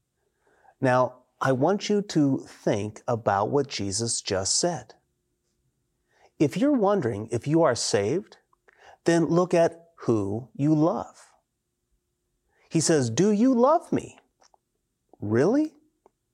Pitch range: 120-165 Hz